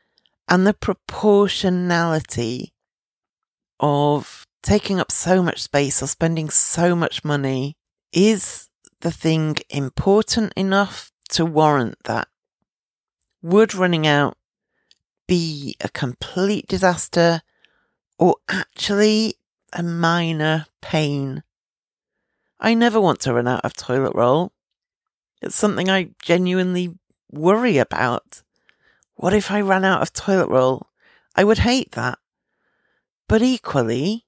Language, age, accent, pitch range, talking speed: English, 40-59, British, 145-190 Hz, 110 wpm